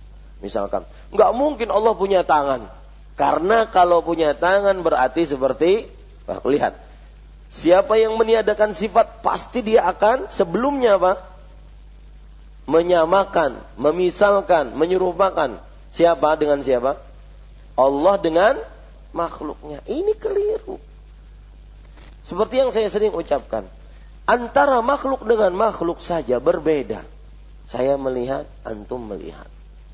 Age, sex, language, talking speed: 40-59, male, Malay, 100 wpm